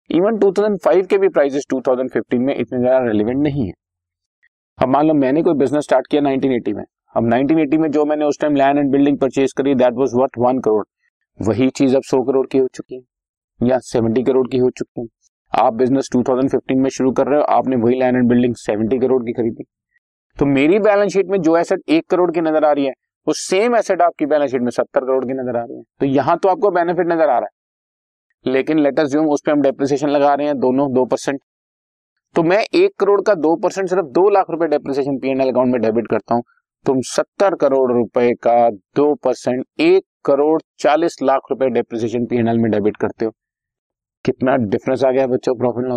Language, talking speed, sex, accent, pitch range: Hindi, 200 wpm, male, native, 125-170 Hz